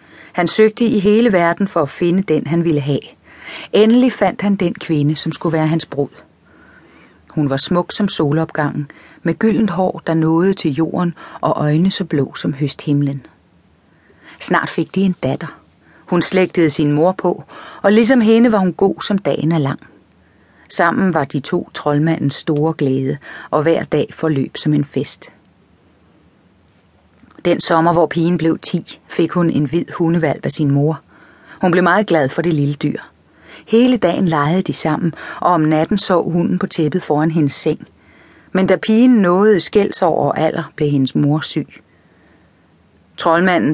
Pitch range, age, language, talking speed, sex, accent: 145-180 Hz, 30-49, Danish, 170 wpm, female, native